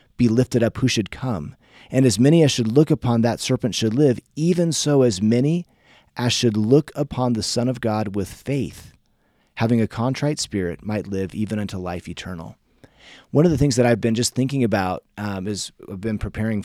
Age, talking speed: 30-49, 200 wpm